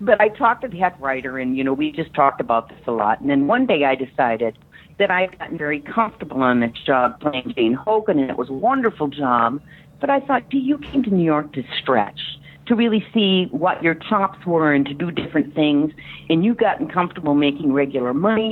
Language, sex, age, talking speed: English, female, 50-69, 230 wpm